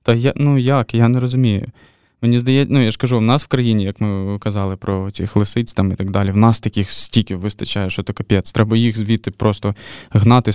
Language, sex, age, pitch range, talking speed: Ukrainian, male, 20-39, 105-130 Hz, 220 wpm